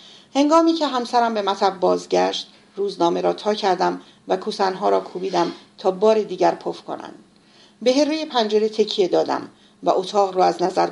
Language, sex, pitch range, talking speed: Persian, female, 190-240 Hz, 160 wpm